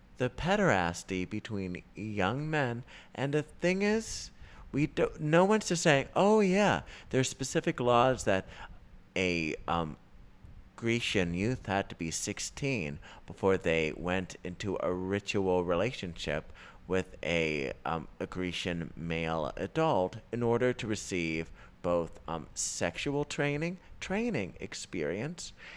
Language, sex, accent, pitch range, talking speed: English, male, American, 90-135 Hz, 125 wpm